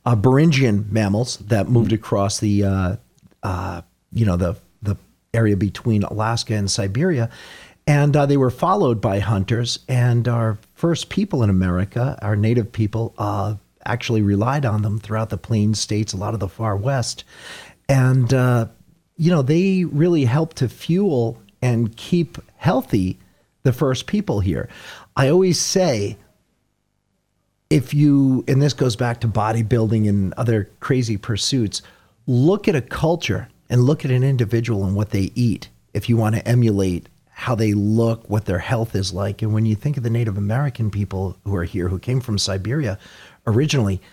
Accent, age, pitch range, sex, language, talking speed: American, 40-59, 100-130 Hz, male, English, 165 wpm